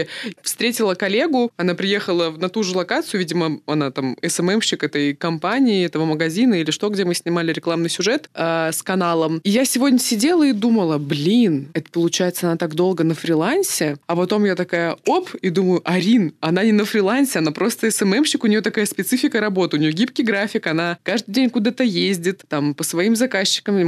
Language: Russian